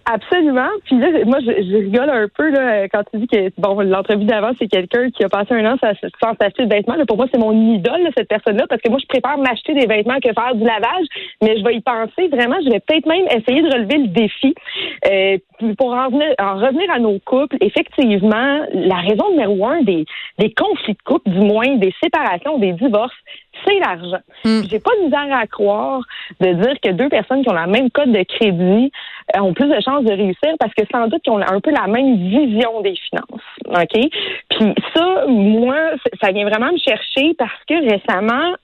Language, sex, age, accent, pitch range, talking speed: French, female, 30-49, Canadian, 210-280 Hz, 215 wpm